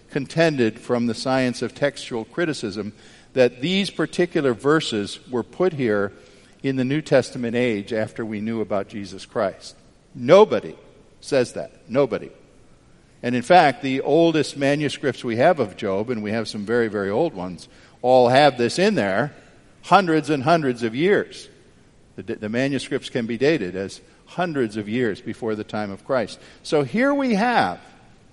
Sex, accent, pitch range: male, American, 115-185 Hz